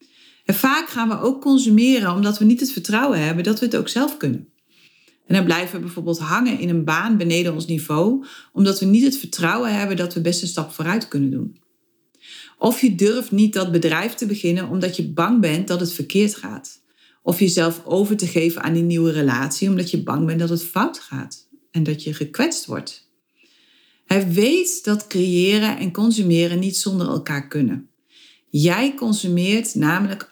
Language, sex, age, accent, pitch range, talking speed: Dutch, female, 40-59, Dutch, 175-245 Hz, 190 wpm